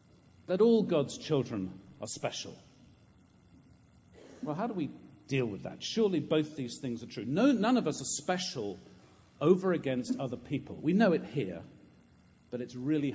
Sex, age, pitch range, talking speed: male, 50-69, 115-145 Hz, 165 wpm